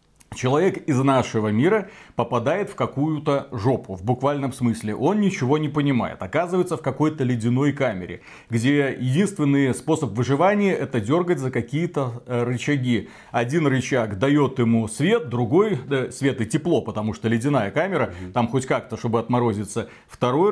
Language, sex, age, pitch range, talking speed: Russian, male, 30-49, 120-155 Hz, 150 wpm